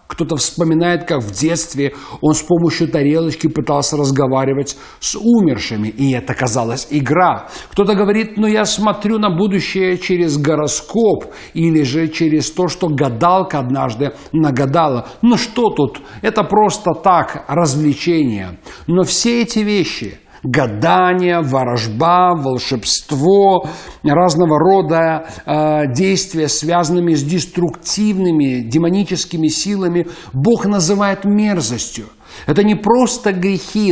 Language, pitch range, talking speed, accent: Russian, 145-190 Hz, 115 wpm, native